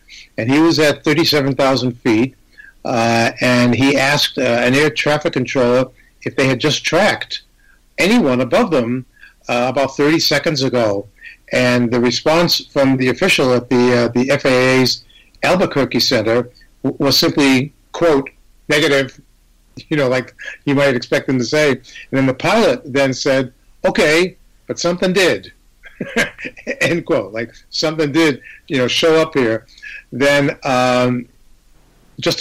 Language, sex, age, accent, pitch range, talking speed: English, male, 50-69, American, 125-155 Hz, 145 wpm